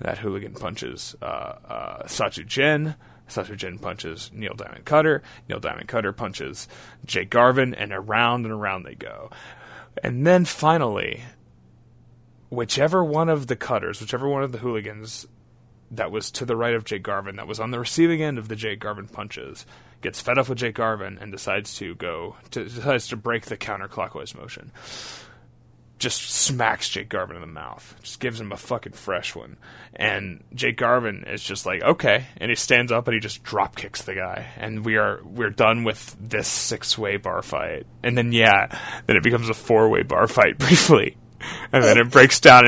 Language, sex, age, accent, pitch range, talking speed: English, male, 20-39, American, 110-125 Hz, 185 wpm